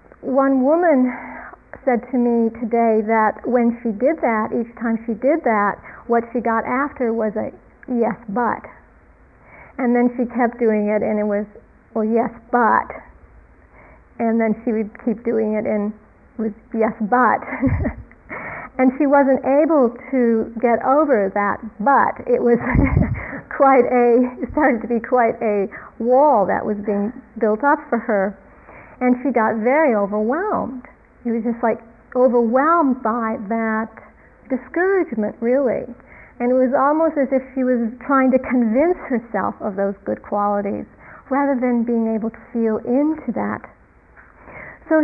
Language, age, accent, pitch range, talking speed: English, 40-59, American, 225-270 Hz, 150 wpm